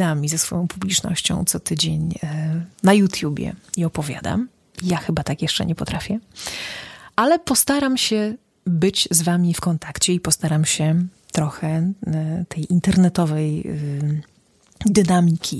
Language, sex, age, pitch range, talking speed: Polish, female, 30-49, 165-195 Hz, 115 wpm